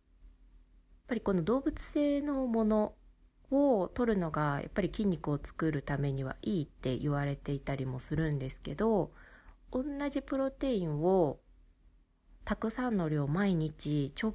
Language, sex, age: Japanese, female, 20-39